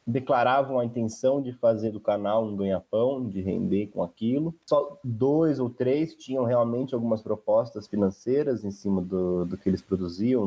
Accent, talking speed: Brazilian, 165 wpm